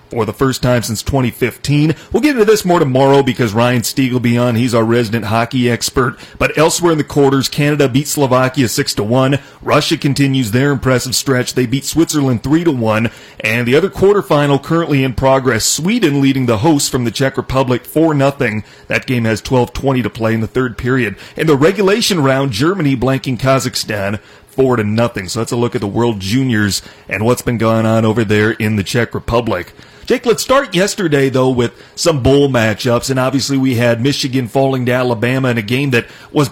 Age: 30-49